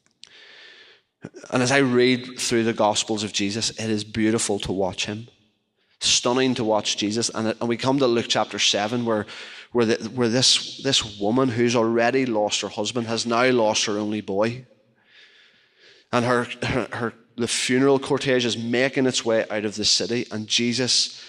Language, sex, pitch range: English, male, 100-120 Hz